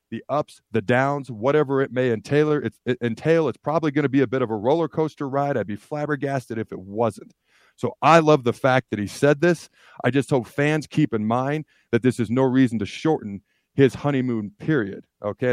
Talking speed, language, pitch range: 215 wpm, English, 105-130 Hz